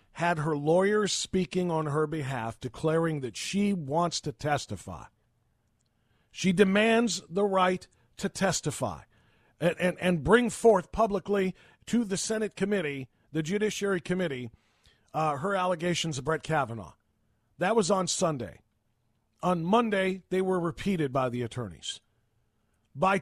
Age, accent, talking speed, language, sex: 50-69, American, 130 wpm, English, male